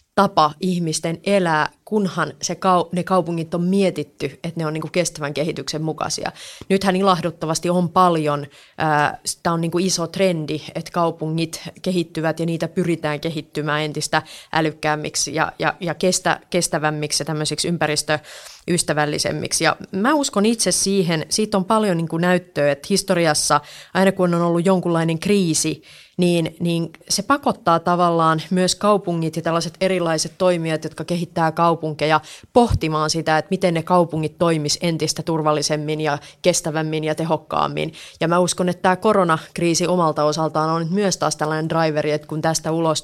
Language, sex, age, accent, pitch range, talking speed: Finnish, female, 30-49, native, 155-185 Hz, 145 wpm